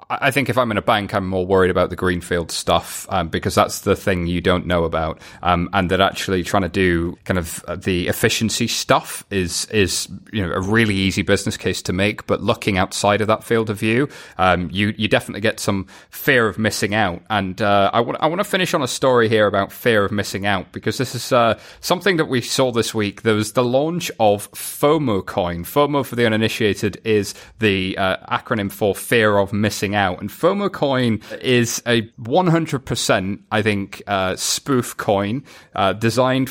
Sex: male